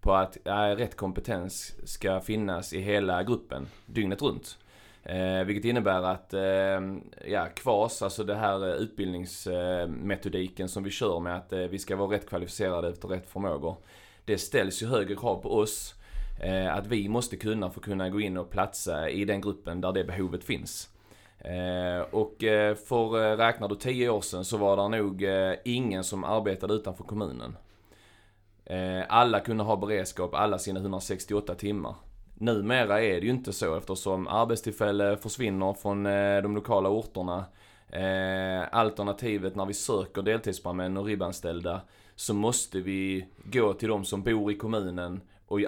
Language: Swedish